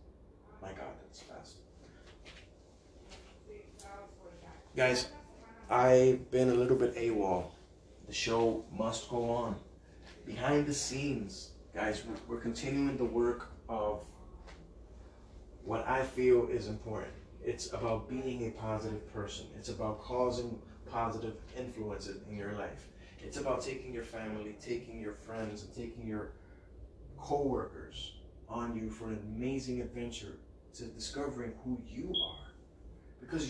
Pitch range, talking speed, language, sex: 90-120 Hz, 120 wpm, English, male